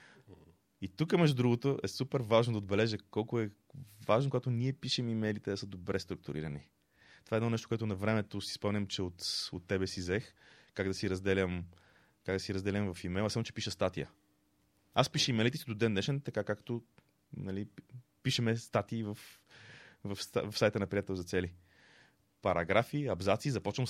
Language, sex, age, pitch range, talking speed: Bulgarian, male, 20-39, 100-130 Hz, 180 wpm